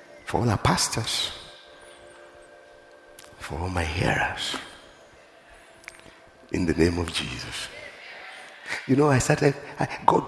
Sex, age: male, 50-69